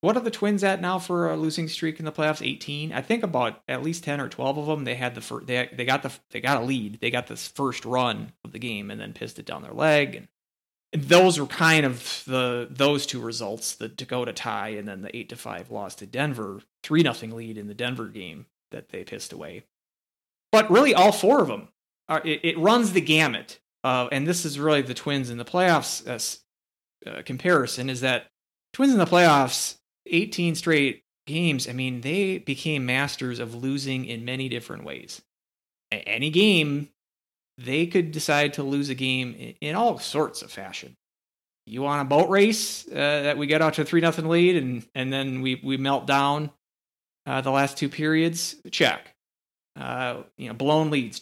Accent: American